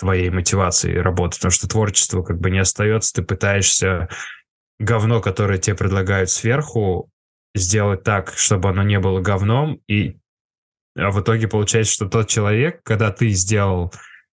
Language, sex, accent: Russian, male, native